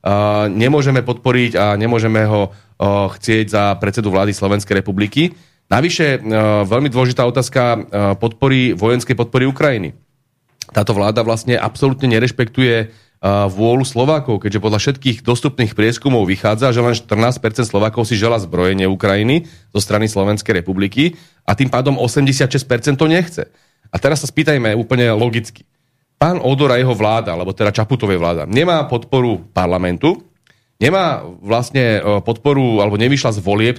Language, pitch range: Slovak, 105-140 Hz